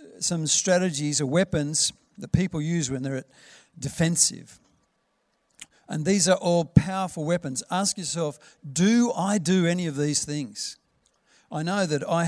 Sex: male